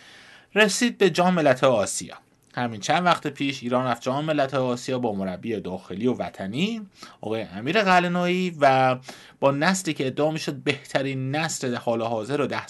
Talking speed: 150 wpm